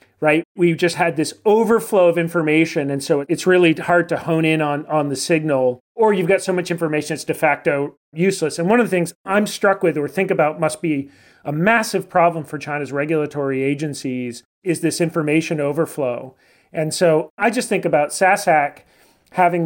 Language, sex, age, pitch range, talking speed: English, male, 40-59, 150-175 Hz, 190 wpm